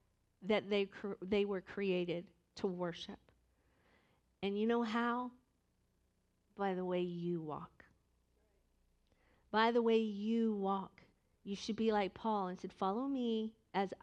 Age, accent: 50-69, American